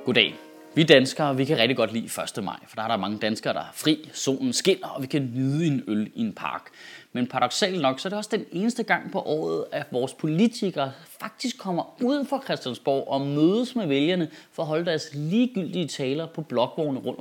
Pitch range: 135-200 Hz